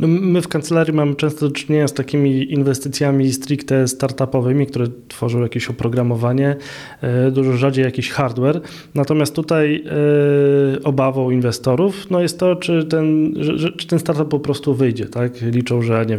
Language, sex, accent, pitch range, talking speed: Polish, male, native, 125-145 Hz, 145 wpm